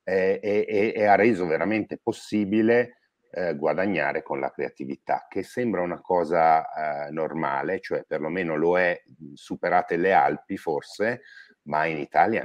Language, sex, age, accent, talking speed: Italian, male, 50-69, native, 140 wpm